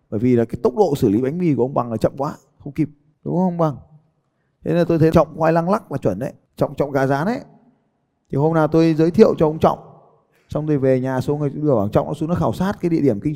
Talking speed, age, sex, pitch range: 285 wpm, 20-39, male, 140-175 Hz